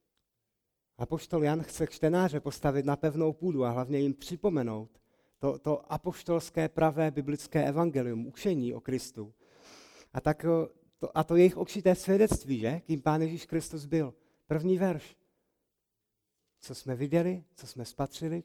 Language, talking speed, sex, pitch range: Czech, 140 wpm, male, 125-165 Hz